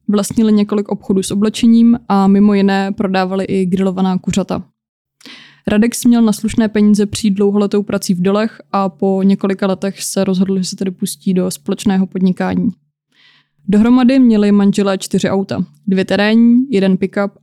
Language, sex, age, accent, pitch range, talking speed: Czech, female, 20-39, native, 195-210 Hz, 150 wpm